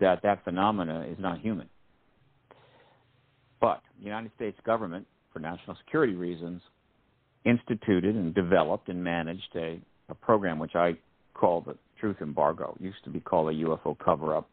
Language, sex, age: English, male, 60-79